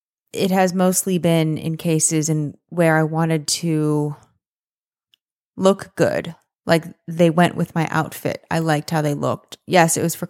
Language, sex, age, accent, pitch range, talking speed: English, female, 20-39, American, 155-185 Hz, 165 wpm